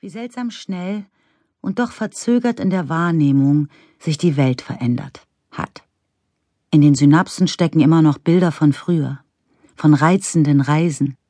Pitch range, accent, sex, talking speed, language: 140-170 Hz, German, female, 140 wpm, German